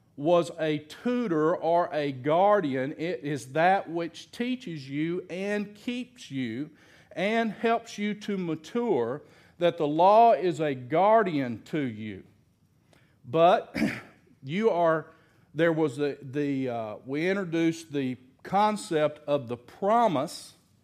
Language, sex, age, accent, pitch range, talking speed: English, male, 50-69, American, 135-180 Hz, 125 wpm